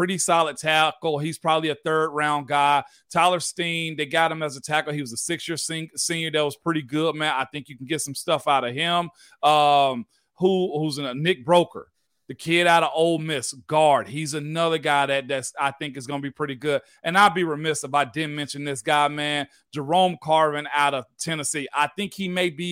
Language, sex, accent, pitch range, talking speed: English, male, American, 150-185 Hz, 220 wpm